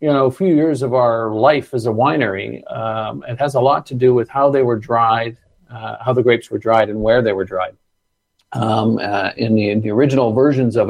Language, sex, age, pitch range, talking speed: English, male, 50-69, 110-125 Hz, 235 wpm